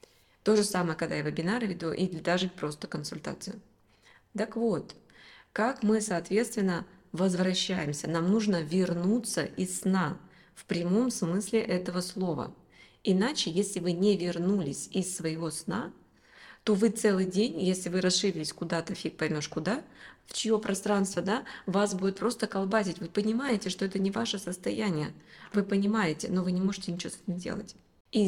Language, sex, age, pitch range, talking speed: Russian, female, 20-39, 175-215 Hz, 155 wpm